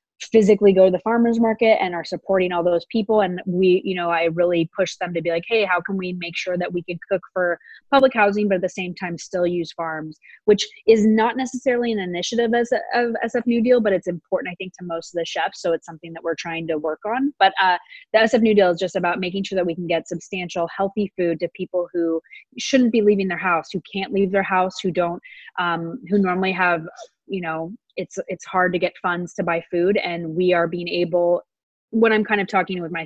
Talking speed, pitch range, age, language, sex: 240 wpm, 170-205 Hz, 20-39, English, female